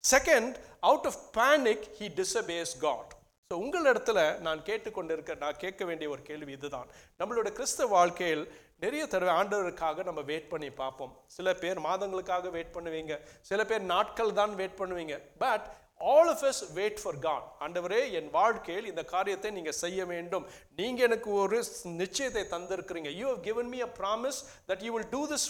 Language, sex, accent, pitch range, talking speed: English, male, Indian, 165-220 Hz, 65 wpm